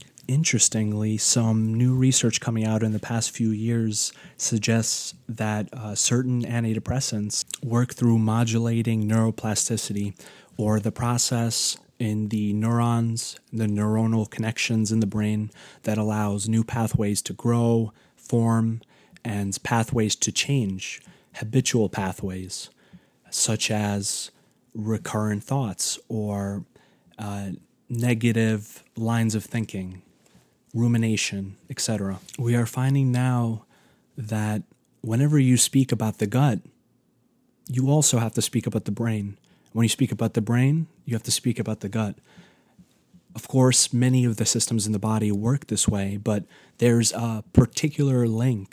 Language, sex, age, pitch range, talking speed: English, male, 30-49, 105-120 Hz, 130 wpm